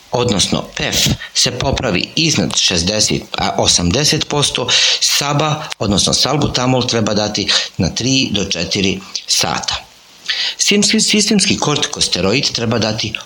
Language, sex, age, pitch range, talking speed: Croatian, male, 50-69, 105-140 Hz, 100 wpm